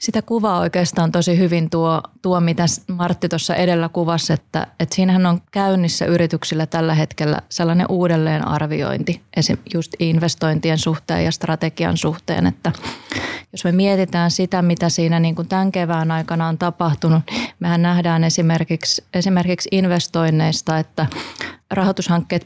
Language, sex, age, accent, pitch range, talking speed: Finnish, female, 20-39, native, 155-175 Hz, 135 wpm